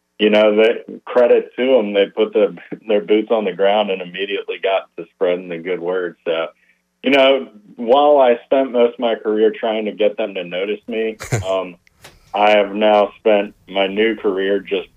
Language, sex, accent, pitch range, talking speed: English, male, American, 95-135 Hz, 185 wpm